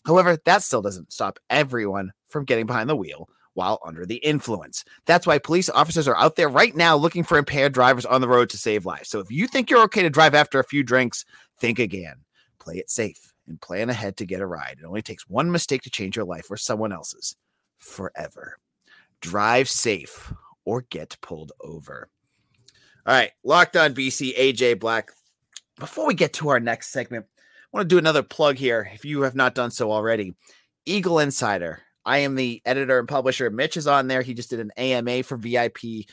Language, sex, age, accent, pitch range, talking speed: English, male, 30-49, American, 110-145 Hz, 205 wpm